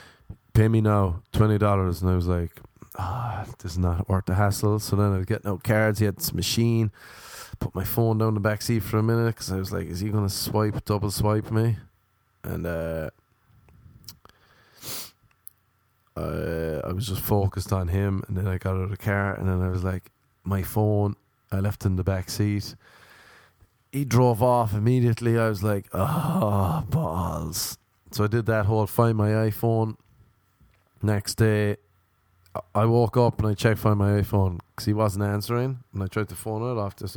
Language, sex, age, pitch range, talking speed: English, male, 20-39, 95-115 Hz, 190 wpm